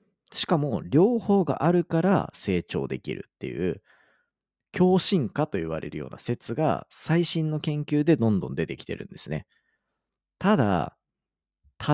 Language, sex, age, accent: Japanese, male, 40-59, native